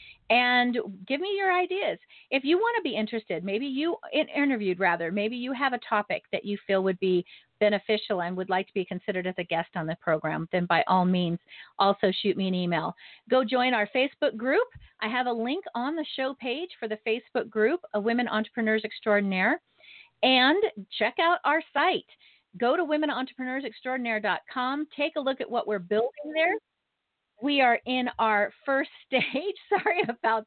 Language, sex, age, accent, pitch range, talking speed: English, female, 40-59, American, 210-270 Hz, 180 wpm